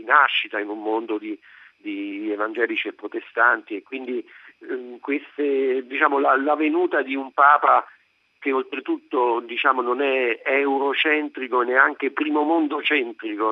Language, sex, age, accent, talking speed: Italian, male, 50-69, native, 135 wpm